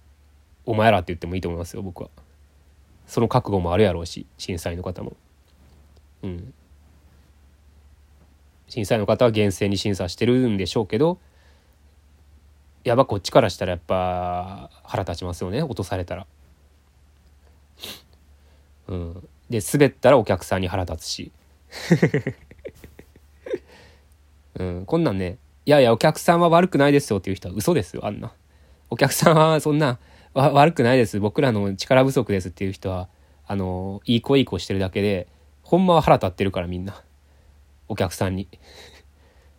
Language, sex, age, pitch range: Japanese, male, 20-39, 75-105 Hz